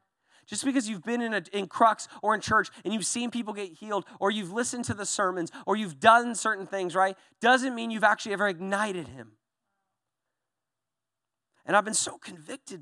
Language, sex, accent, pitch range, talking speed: English, male, American, 130-205 Hz, 190 wpm